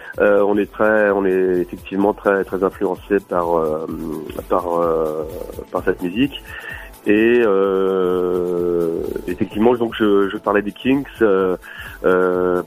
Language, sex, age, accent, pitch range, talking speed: French, male, 30-49, French, 90-105 Hz, 135 wpm